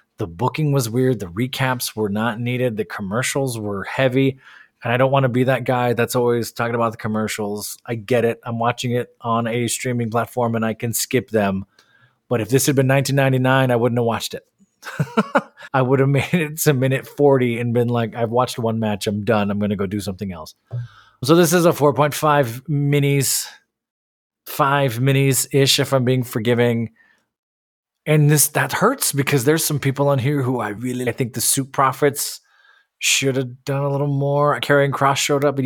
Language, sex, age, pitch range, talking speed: English, male, 20-39, 115-140 Hz, 200 wpm